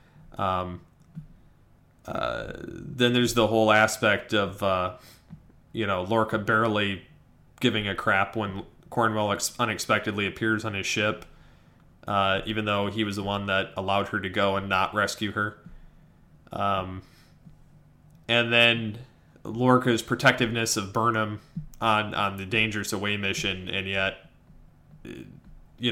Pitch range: 105-125 Hz